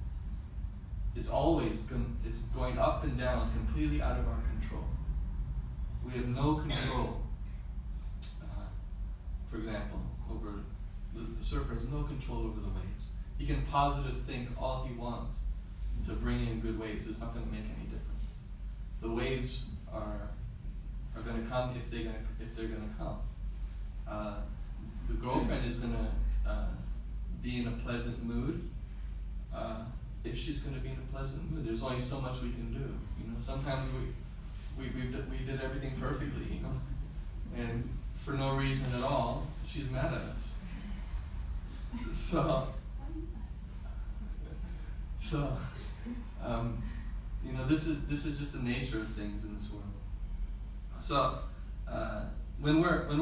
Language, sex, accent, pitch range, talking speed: English, male, American, 90-130 Hz, 155 wpm